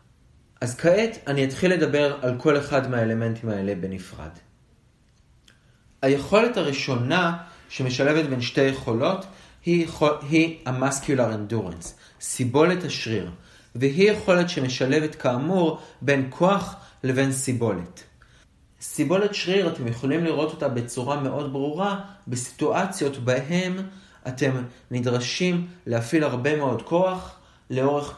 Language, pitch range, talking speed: Hebrew, 120-165 Hz, 100 wpm